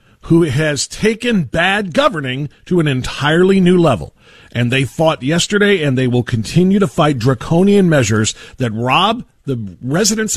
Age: 50-69